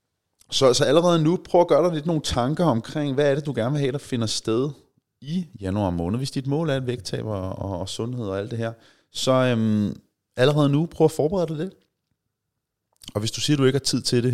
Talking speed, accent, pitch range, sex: 245 wpm, native, 100-140 Hz, male